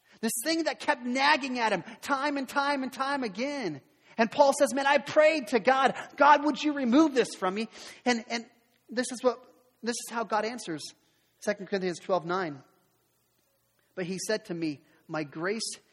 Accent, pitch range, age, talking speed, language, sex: American, 150-225 Hz, 30-49, 175 wpm, English, male